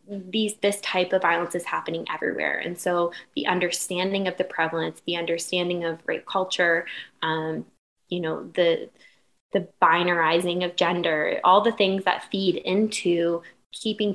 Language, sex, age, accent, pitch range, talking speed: English, female, 10-29, American, 170-185 Hz, 150 wpm